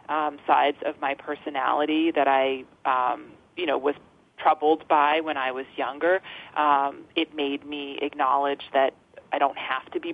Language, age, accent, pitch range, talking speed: English, 30-49, American, 140-160 Hz, 165 wpm